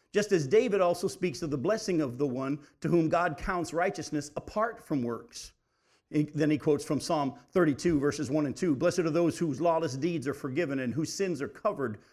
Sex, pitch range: male, 155-215 Hz